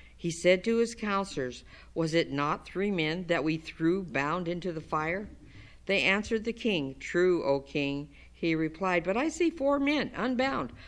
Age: 50-69